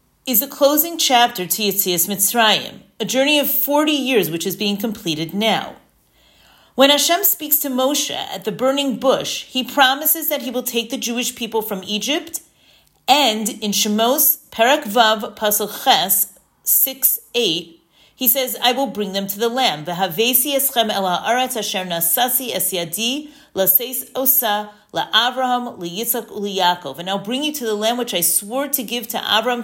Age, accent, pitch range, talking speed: 40-59, American, 190-260 Hz, 140 wpm